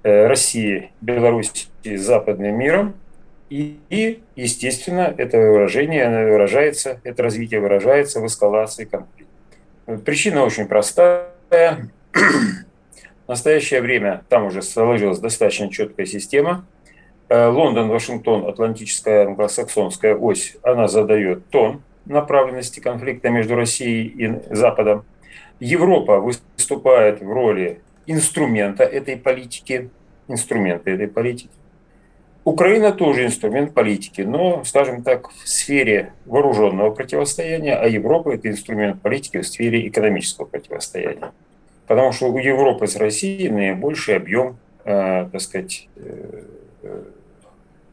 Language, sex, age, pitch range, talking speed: Russian, male, 40-59, 105-150 Hz, 105 wpm